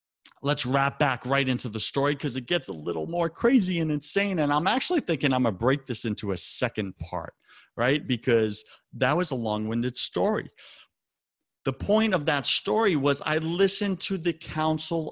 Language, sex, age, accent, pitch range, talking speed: English, male, 40-59, American, 120-165 Hz, 185 wpm